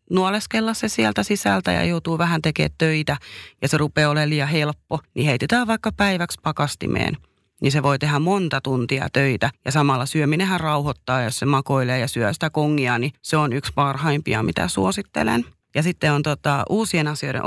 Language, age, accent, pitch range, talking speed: Finnish, 30-49, native, 140-165 Hz, 175 wpm